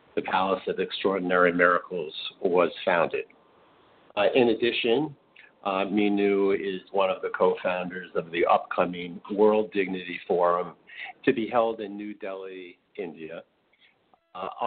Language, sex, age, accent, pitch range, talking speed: English, male, 50-69, American, 90-135 Hz, 125 wpm